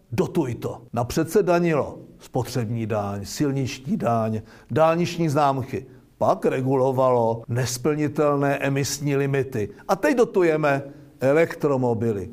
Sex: male